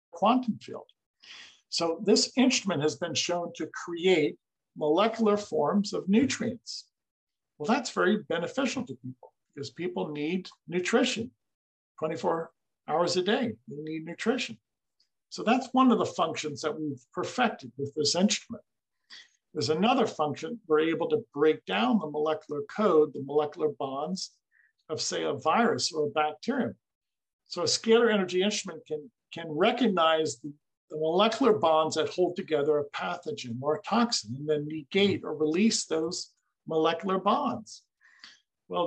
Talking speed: 140 wpm